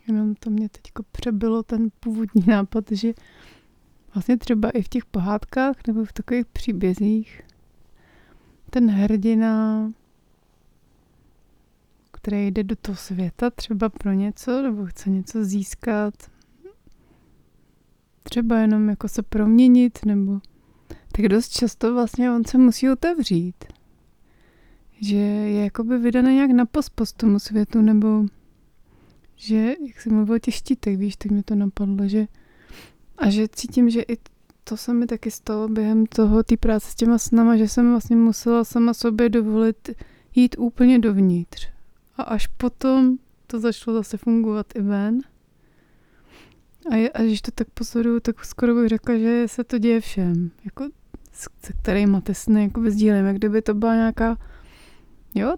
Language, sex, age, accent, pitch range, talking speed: Czech, female, 30-49, native, 210-235 Hz, 140 wpm